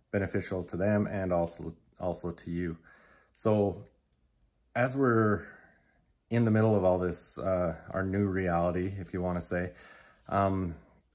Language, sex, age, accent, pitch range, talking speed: English, male, 30-49, American, 90-105 Hz, 145 wpm